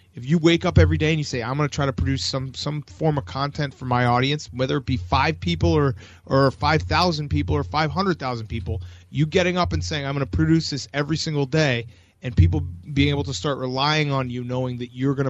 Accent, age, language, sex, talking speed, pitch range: American, 30-49, English, male, 240 wpm, 125-155 Hz